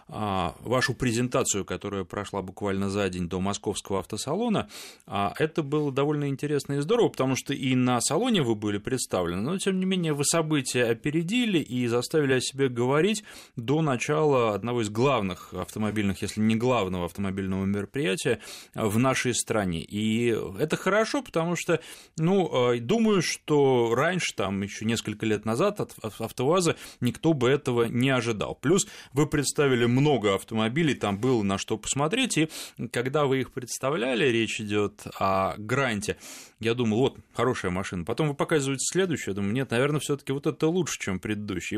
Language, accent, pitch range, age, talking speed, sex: Russian, native, 105-150 Hz, 30-49, 160 wpm, male